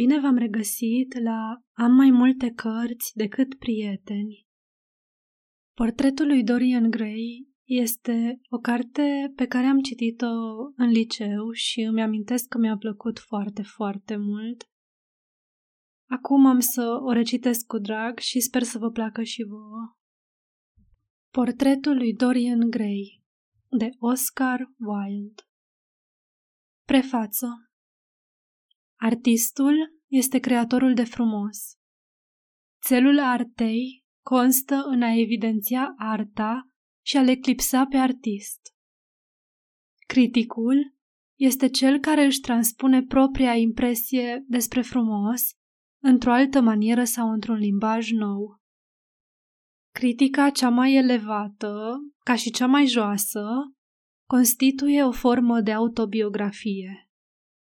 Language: Romanian